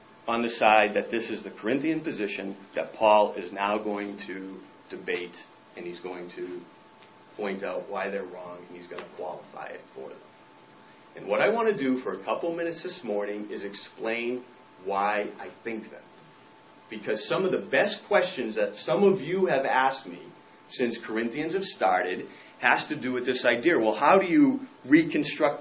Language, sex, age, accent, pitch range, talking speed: English, male, 40-59, American, 105-150 Hz, 185 wpm